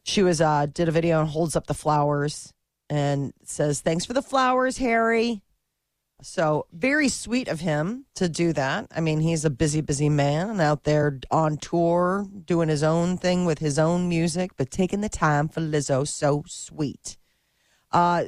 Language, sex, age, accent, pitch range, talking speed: English, female, 40-59, American, 150-190 Hz, 175 wpm